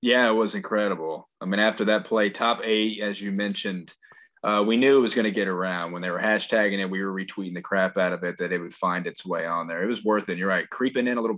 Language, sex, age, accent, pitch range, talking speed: English, male, 20-39, American, 95-110 Hz, 285 wpm